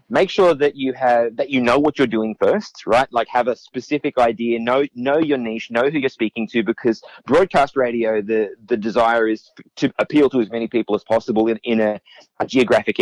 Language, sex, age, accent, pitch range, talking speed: English, male, 30-49, Australian, 110-135 Hz, 215 wpm